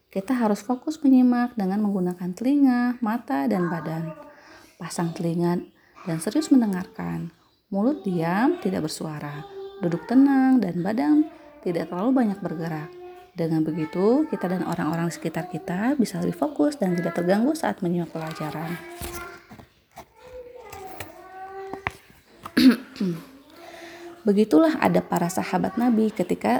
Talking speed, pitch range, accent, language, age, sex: 115 wpm, 170-250 Hz, native, Indonesian, 30-49, female